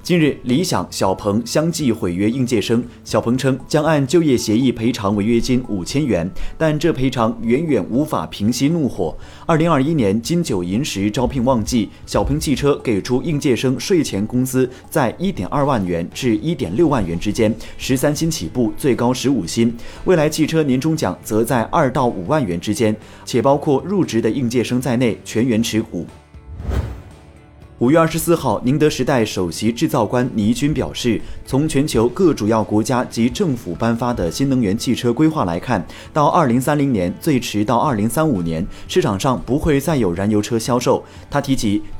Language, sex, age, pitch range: Chinese, male, 30-49, 105-140 Hz